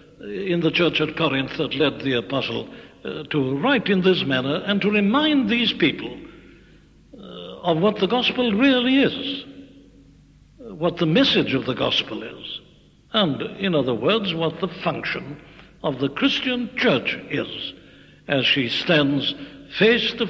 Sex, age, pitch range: male, 60-79, 145-195 Hz